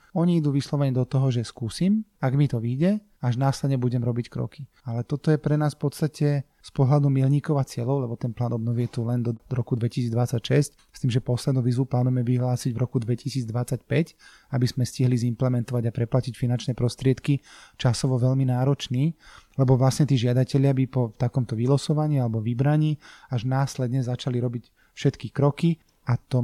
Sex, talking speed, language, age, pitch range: male, 175 wpm, Slovak, 30-49, 120-145 Hz